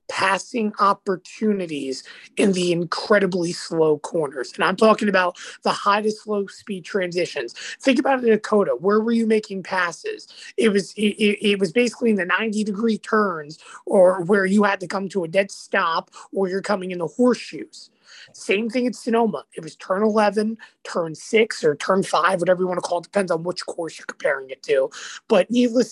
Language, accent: English, American